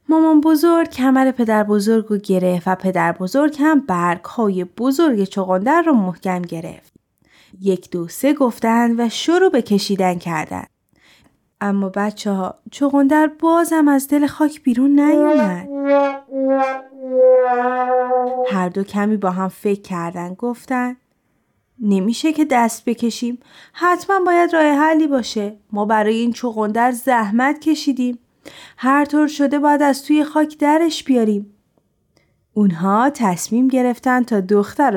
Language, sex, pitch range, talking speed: Persian, female, 205-290 Hz, 125 wpm